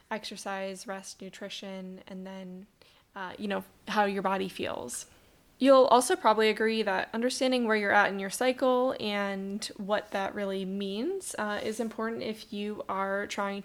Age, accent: 10-29, American